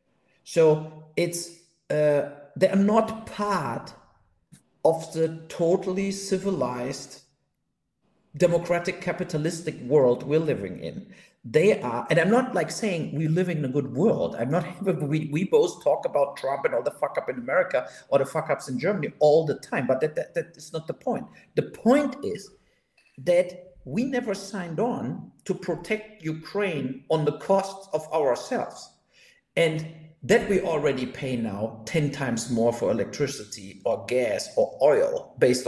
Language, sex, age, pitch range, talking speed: English, male, 50-69, 140-195 Hz, 160 wpm